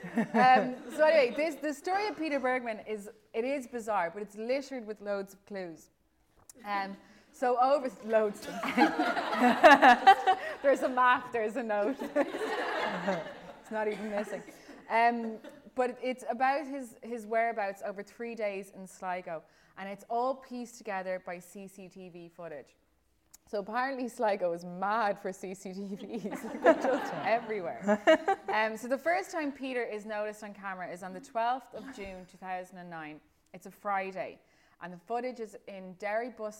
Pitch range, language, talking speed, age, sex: 180-240 Hz, English, 150 wpm, 20-39, female